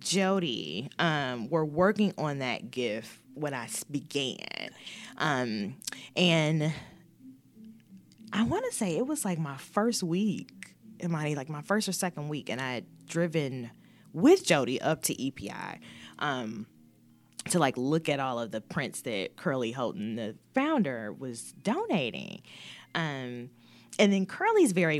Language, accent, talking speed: English, American, 140 wpm